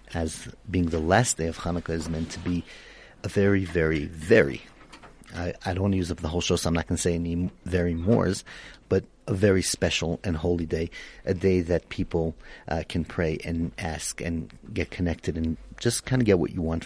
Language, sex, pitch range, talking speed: German, male, 85-95 Hz, 215 wpm